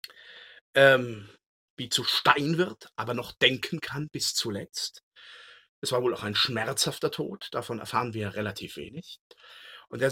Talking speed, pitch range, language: 140 wpm, 115-155 Hz, German